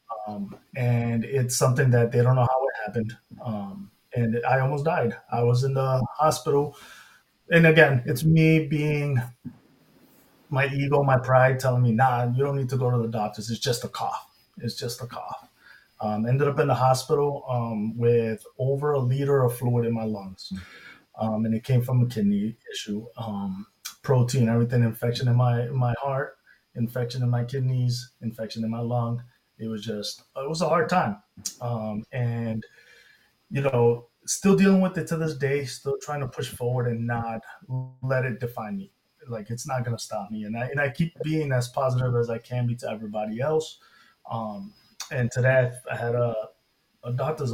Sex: male